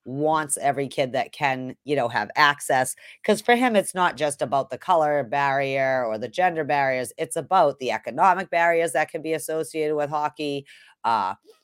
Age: 30-49